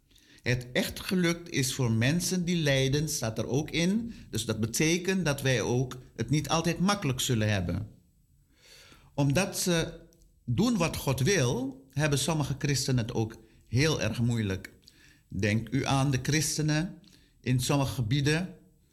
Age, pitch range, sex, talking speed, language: 50-69, 120-160 Hz, male, 145 wpm, Dutch